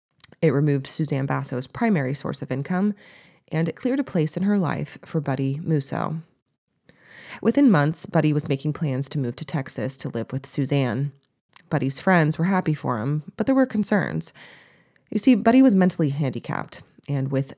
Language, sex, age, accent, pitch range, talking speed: English, female, 30-49, American, 135-175 Hz, 175 wpm